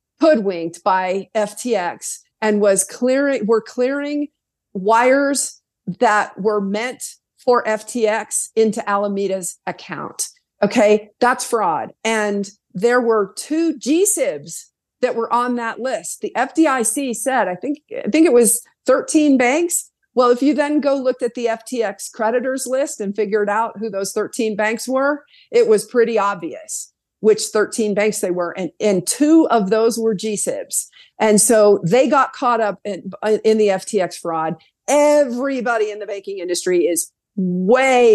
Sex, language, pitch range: female, English, 200-255 Hz